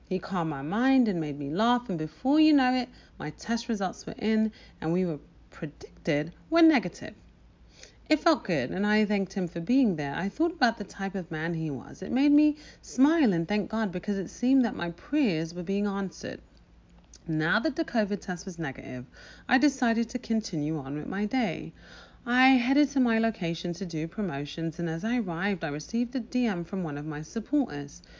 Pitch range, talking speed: 165-250 Hz, 200 wpm